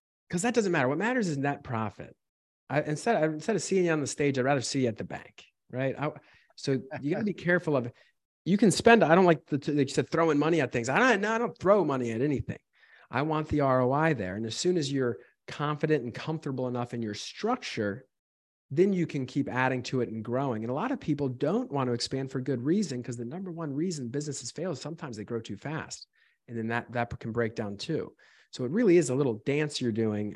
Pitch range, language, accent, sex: 115-150 Hz, English, American, male